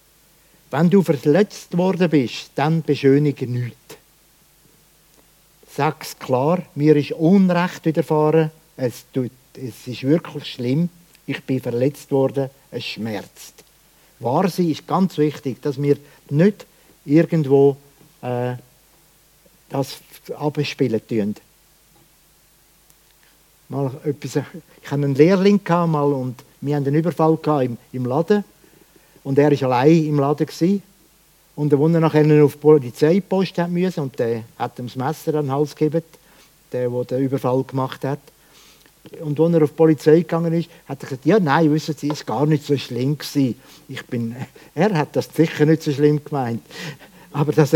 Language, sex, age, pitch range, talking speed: German, male, 60-79, 135-165 Hz, 140 wpm